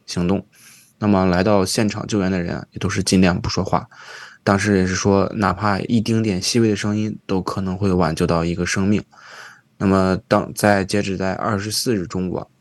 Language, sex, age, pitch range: Chinese, male, 20-39, 95-105 Hz